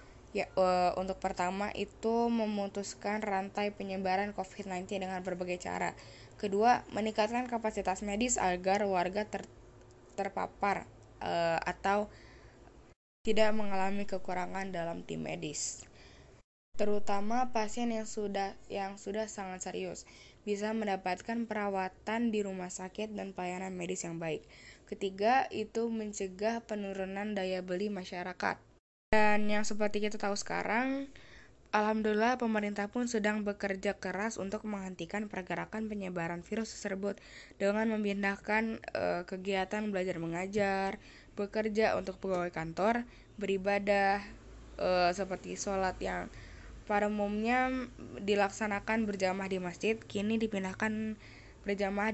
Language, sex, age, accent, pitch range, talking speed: Indonesian, female, 10-29, native, 185-215 Hz, 110 wpm